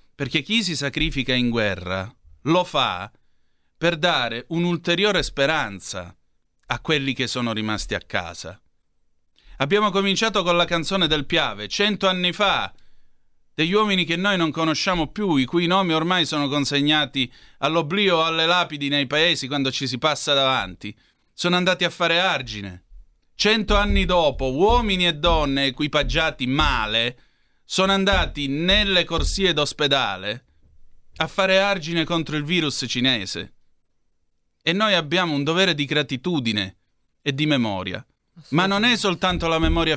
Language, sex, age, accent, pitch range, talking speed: Italian, male, 30-49, native, 105-170 Hz, 140 wpm